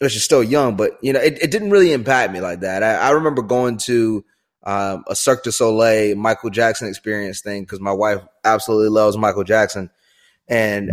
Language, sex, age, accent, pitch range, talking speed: English, male, 20-39, American, 100-135 Hz, 200 wpm